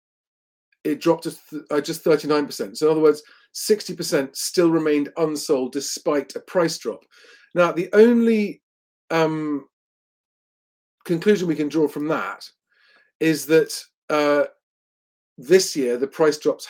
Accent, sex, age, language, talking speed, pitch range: British, male, 40-59, English, 135 wpm, 140-205 Hz